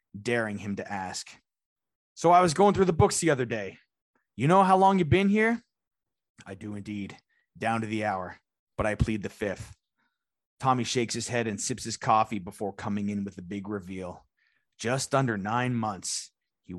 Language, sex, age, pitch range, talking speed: English, male, 30-49, 105-135 Hz, 190 wpm